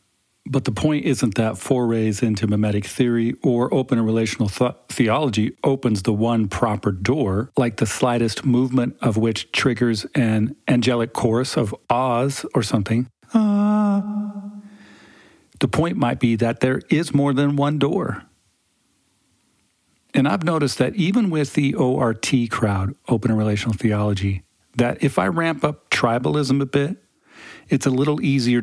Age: 40-59